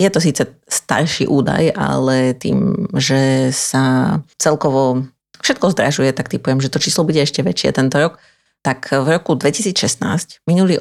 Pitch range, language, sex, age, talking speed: 145-180 Hz, Slovak, female, 30-49, 150 wpm